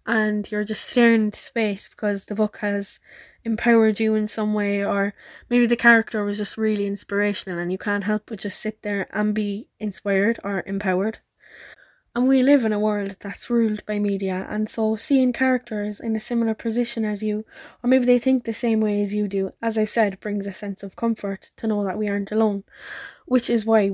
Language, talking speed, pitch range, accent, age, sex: English, 210 wpm, 200-225 Hz, Irish, 10-29, female